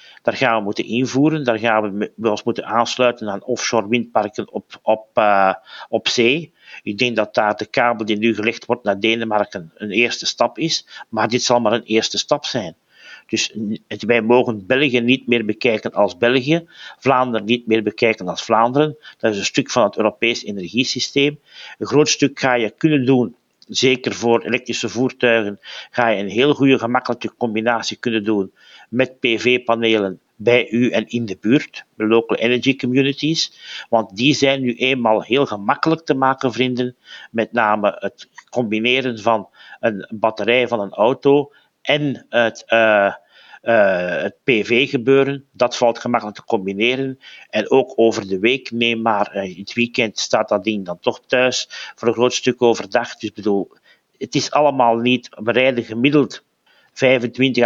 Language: Dutch